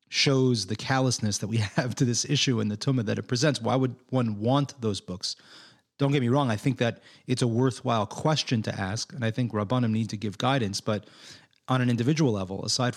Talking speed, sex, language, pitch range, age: 220 wpm, male, English, 105-125 Hz, 30-49